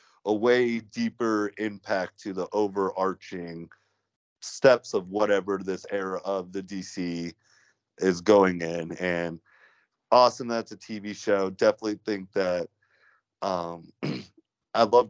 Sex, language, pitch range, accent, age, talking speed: male, English, 90-110 Hz, American, 30-49, 120 wpm